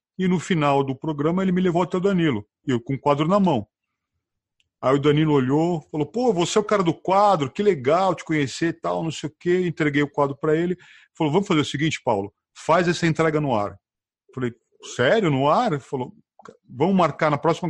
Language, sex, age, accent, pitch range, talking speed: Portuguese, male, 40-59, Brazilian, 125-165 Hz, 215 wpm